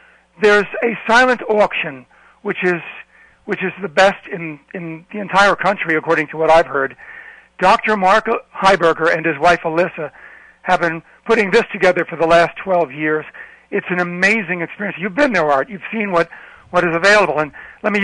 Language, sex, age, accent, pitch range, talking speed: English, male, 60-79, American, 165-200 Hz, 180 wpm